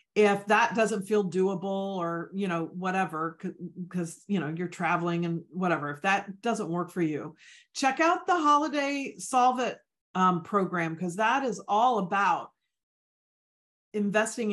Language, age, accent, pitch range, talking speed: English, 40-59, American, 175-220 Hz, 150 wpm